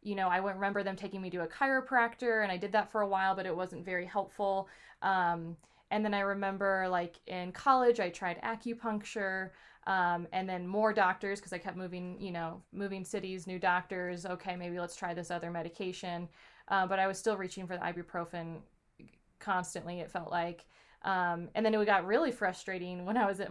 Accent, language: American, English